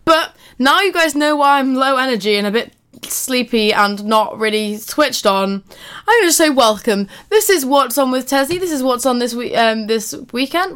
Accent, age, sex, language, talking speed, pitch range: British, 20-39, female, English, 210 wpm, 205-270 Hz